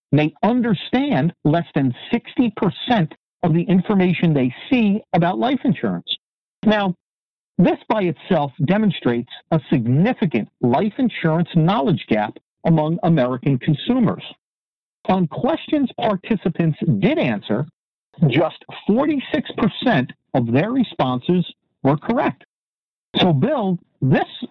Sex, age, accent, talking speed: male, 50-69, American, 105 wpm